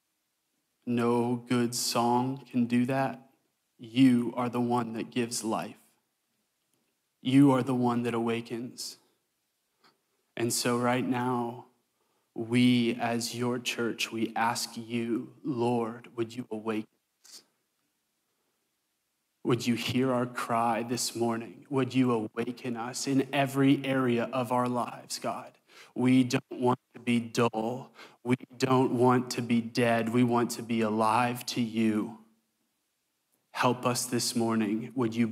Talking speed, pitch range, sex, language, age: 130 wpm, 115-125 Hz, male, English, 20-39